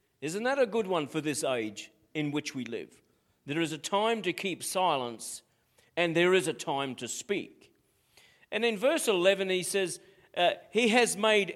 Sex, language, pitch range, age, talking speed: male, English, 155-200 Hz, 50-69, 185 wpm